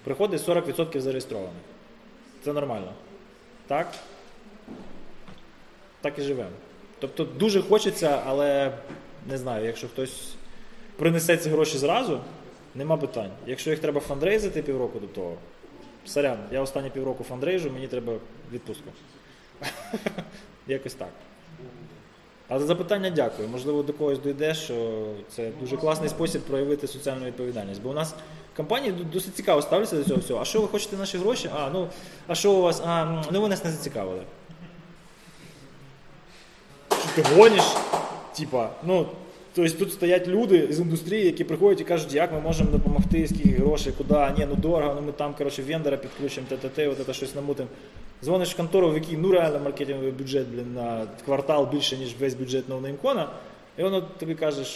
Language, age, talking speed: Ukrainian, 20-39, 160 wpm